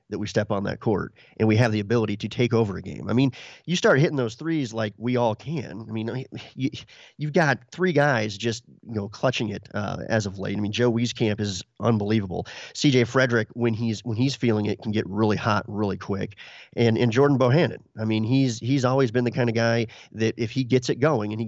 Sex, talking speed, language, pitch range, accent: male, 235 wpm, English, 110-130 Hz, American